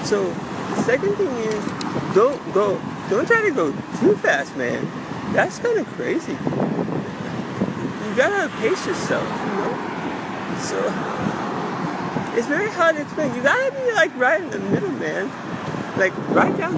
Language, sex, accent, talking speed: English, male, American, 155 wpm